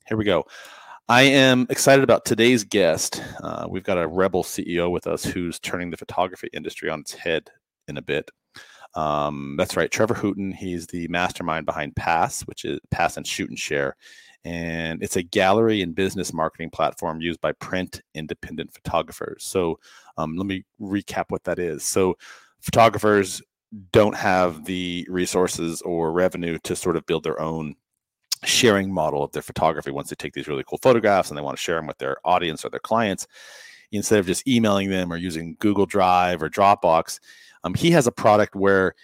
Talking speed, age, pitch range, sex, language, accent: 185 wpm, 40-59, 85-105 Hz, male, English, American